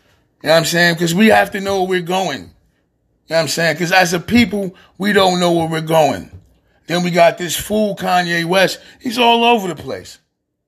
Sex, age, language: male, 30-49, English